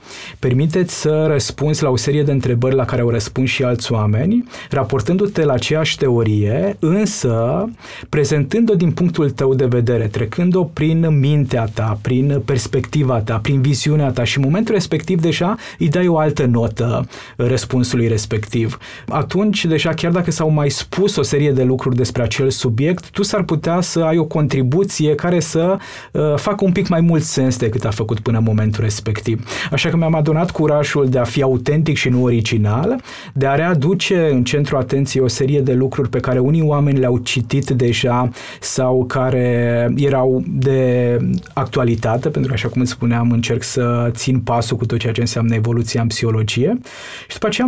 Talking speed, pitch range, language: 175 wpm, 125-160 Hz, Romanian